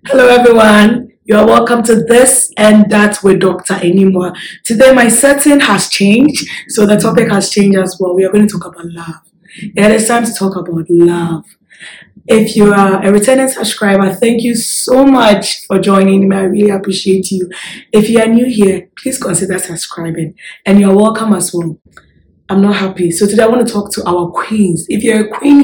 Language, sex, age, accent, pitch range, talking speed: English, female, 20-39, Nigerian, 175-215 Hz, 195 wpm